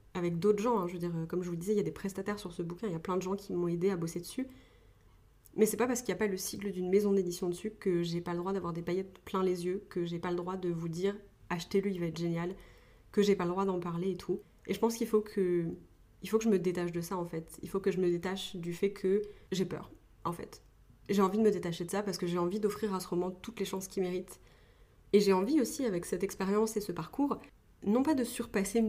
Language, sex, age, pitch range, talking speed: French, female, 20-39, 180-215 Hz, 290 wpm